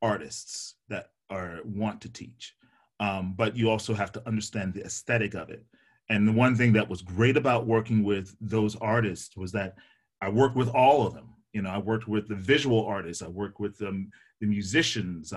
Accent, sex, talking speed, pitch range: American, male, 200 wpm, 100-120 Hz